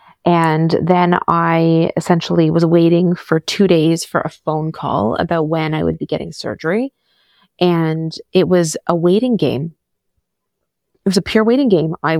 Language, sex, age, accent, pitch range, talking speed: English, female, 20-39, American, 155-185 Hz, 160 wpm